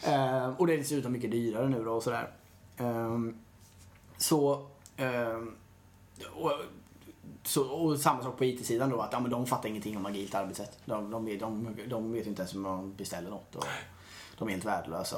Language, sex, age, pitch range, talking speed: Swedish, male, 20-39, 110-130 Hz, 180 wpm